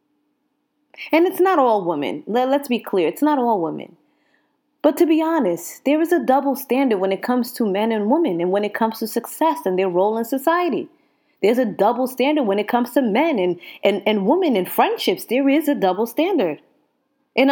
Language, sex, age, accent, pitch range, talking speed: English, female, 20-39, American, 205-290 Hz, 205 wpm